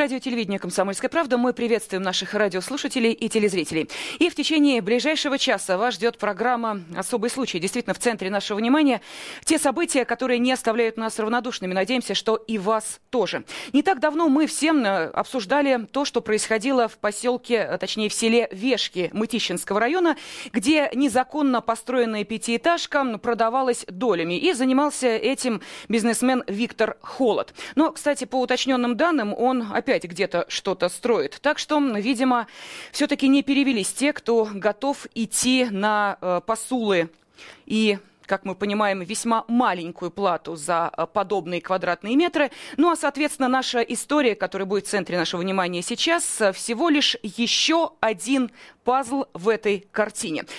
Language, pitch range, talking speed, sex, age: Russian, 205-275 Hz, 140 wpm, female, 20-39